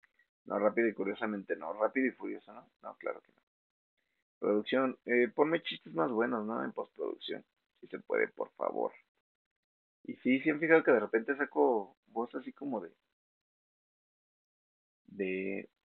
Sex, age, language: male, 30-49, Spanish